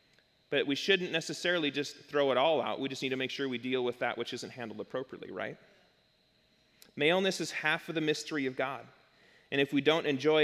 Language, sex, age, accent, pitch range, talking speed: English, male, 30-49, American, 140-175 Hz, 215 wpm